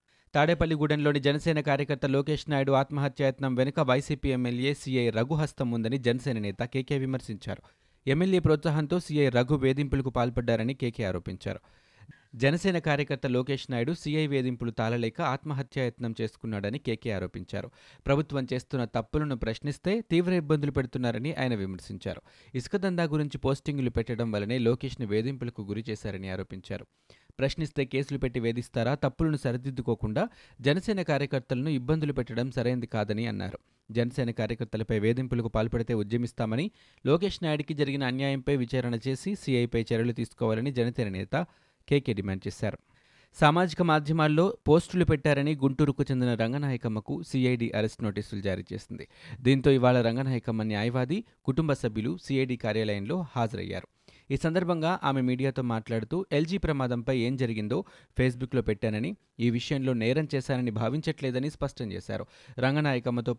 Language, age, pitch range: Telugu, 30-49, 115-145 Hz